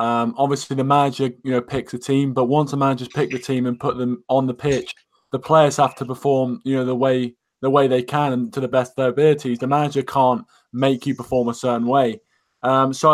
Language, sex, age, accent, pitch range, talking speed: English, male, 20-39, British, 130-145 Hz, 240 wpm